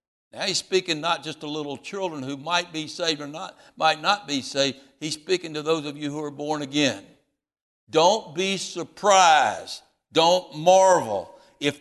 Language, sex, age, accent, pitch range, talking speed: English, male, 60-79, American, 185-265 Hz, 175 wpm